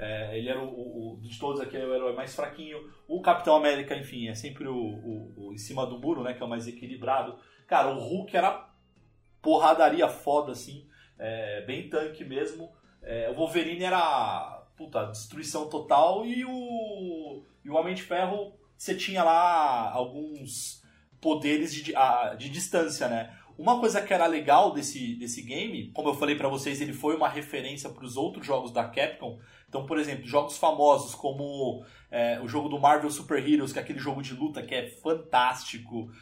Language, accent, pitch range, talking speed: Portuguese, Brazilian, 125-155 Hz, 180 wpm